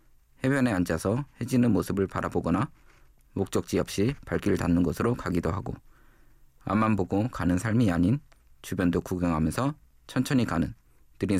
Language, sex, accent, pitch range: Korean, male, native, 80-120 Hz